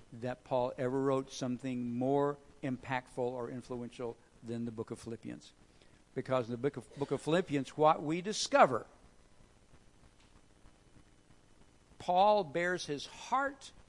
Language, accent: English, American